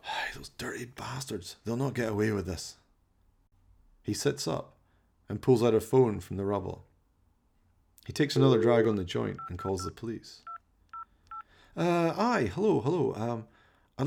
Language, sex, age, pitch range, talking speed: English, male, 40-59, 95-140 Hz, 160 wpm